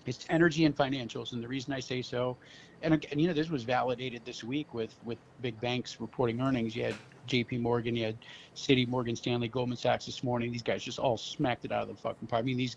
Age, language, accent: 50-69, English, American